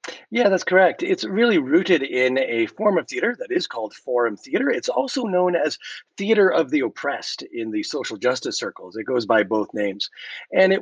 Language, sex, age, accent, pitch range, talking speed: English, male, 40-59, American, 115-195 Hz, 200 wpm